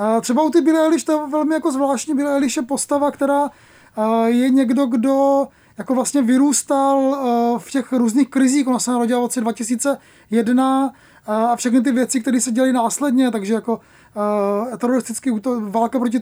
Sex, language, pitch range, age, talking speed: male, Czech, 230-270 Hz, 20-39, 155 wpm